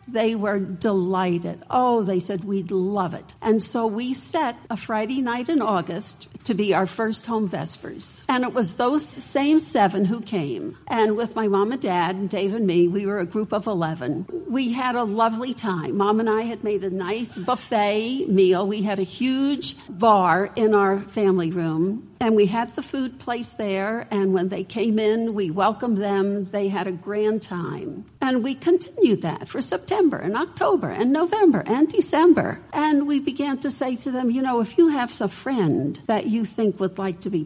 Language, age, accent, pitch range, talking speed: English, 60-79, American, 195-260 Hz, 200 wpm